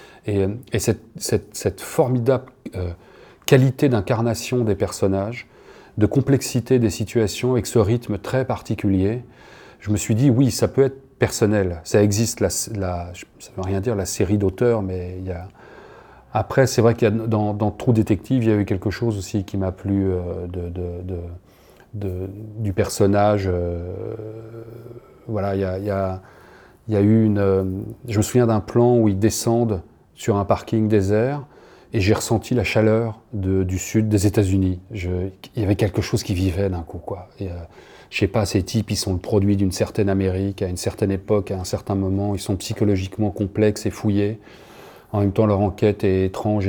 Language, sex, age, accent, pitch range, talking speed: French, male, 30-49, French, 95-110 Hz, 200 wpm